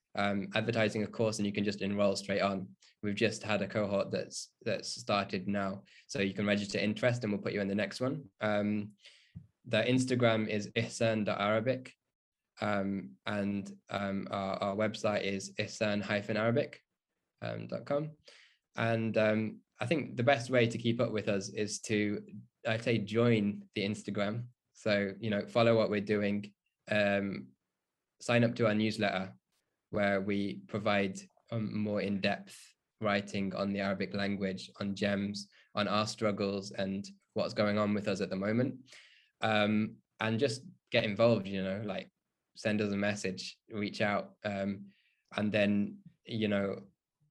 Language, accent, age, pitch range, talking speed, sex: English, British, 10-29, 100-115 Hz, 155 wpm, male